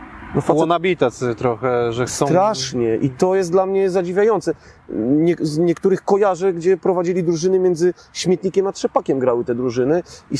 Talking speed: 150 wpm